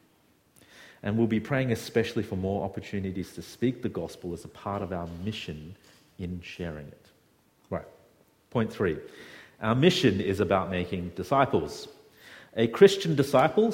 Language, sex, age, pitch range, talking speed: English, male, 40-59, 105-135 Hz, 145 wpm